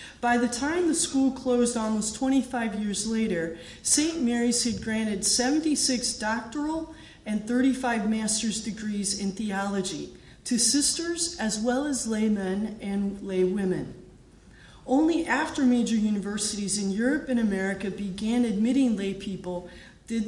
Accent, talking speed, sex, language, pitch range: American, 125 wpm, female, English, 195-265 Hz